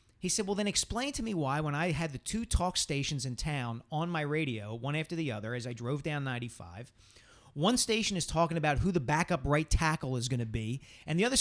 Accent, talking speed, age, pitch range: American, 240 wpm, 40-59, 125-170 Hz